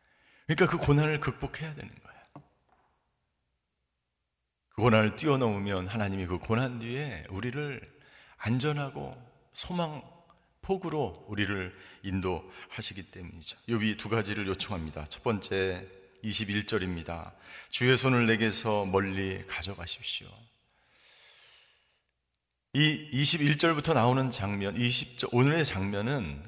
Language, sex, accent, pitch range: Korean, male, native, 95-140 Hz